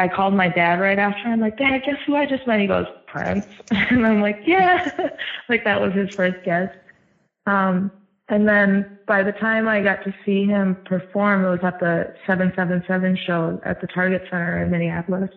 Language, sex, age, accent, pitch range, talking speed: English, female, 20-39, American, 175-205 Hz, 205 wpm